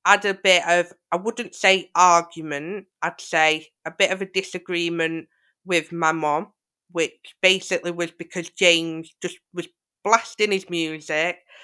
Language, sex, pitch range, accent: English, female, 165-190 Hz, British